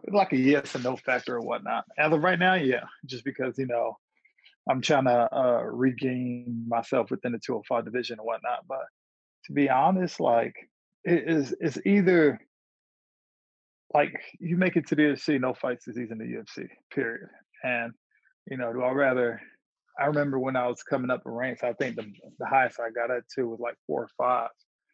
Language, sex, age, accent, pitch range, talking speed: English, male, 20-39, American, 120-145 Hz, 195 wpm